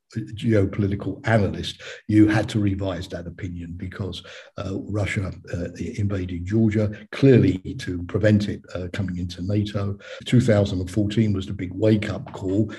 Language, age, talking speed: English, 50-69, 130 wpm